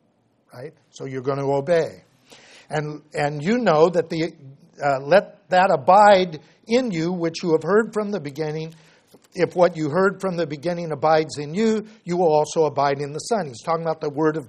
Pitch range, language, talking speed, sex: 155-185 Hz, English, 200 wpm, male